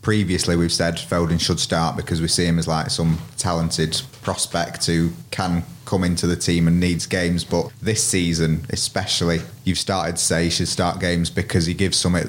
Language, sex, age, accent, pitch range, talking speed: English, male, 20-39, British, 85-105 Hz, 195 wpm